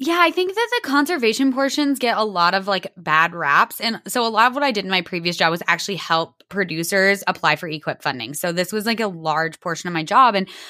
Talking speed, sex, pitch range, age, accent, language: 255 wpm, female, 170-220 Hz, 10-29, American, English